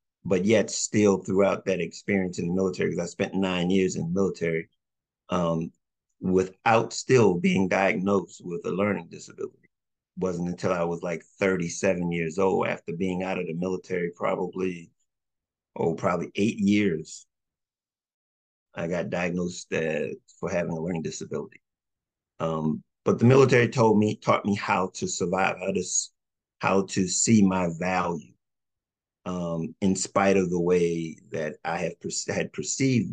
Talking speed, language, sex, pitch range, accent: 155 wpm, English, male, 85-95 Hz, American